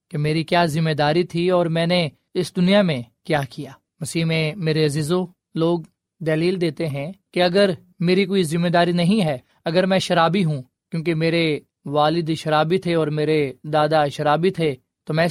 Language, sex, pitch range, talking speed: Urdu, male, 155-185 Hz, 180 wpm